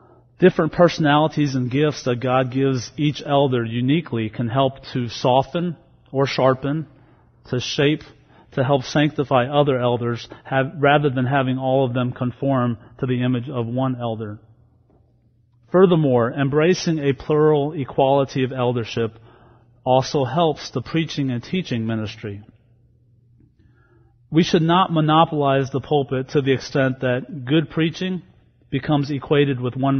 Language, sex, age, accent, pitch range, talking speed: English, male, 40-59, American, 120-140 Hz, 130 wpm